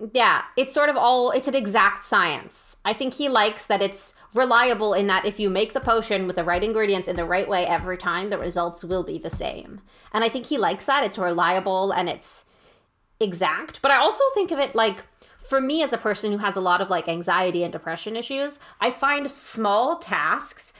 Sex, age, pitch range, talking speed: female, 30-49, 180-235 Hz, 220 wpm